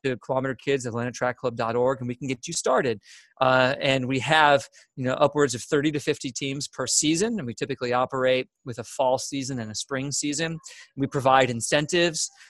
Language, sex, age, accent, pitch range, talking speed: English, male, 30-49, American, 125-150 Hz, 185 wpm